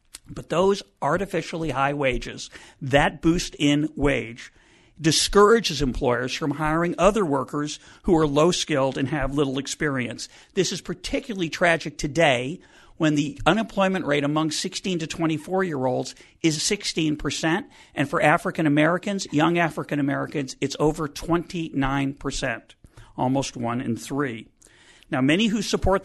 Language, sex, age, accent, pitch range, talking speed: English, male, 50-69, American, 145-185 Hz, 120 wpm